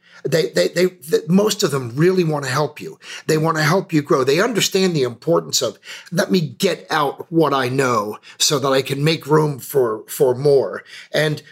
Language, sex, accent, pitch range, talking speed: English, male, American, 135-185 Hz, 210 wpm